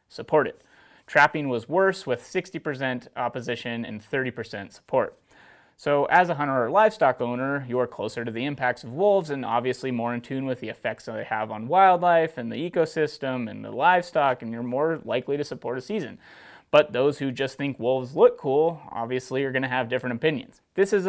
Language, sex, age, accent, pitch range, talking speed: English, male, 30-49, American, 125-155 Hz, 195 wpm